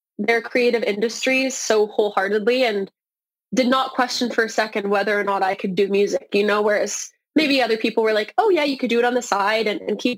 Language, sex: English, female